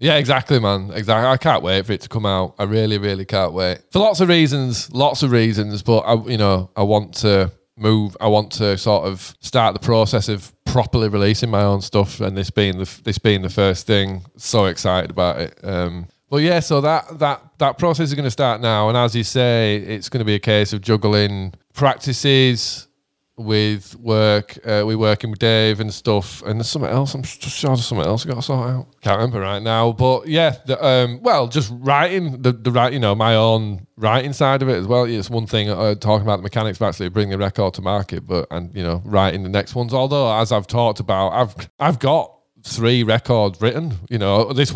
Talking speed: 230 wpm